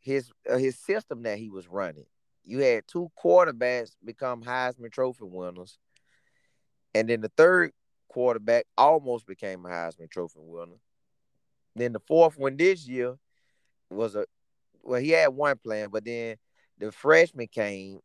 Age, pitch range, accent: 30-49, 110-145 Hz, American